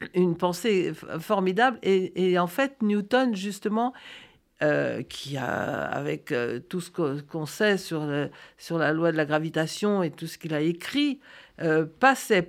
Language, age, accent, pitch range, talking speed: French, 50-69, French, 175-255 Hz, 175 wpm